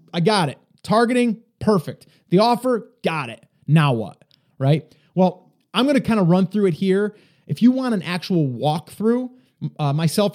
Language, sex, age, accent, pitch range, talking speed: English, male, 30-49, American, 145-185 Hz, 175 wpm